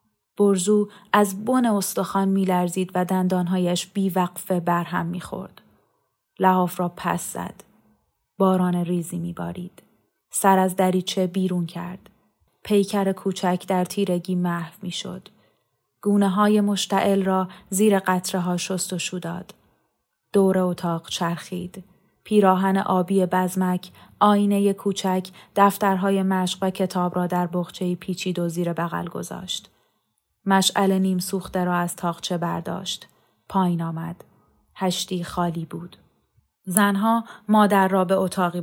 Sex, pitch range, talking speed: female, 175-195 Hz, 125 wpm